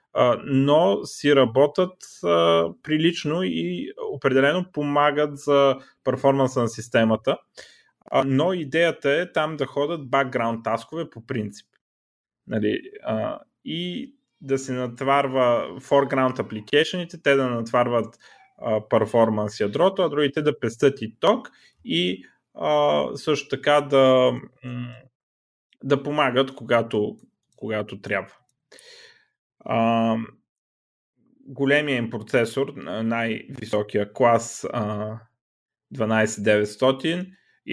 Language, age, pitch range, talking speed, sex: Bulgarian, 30-49, 110-145 Hz, 95 wpm, male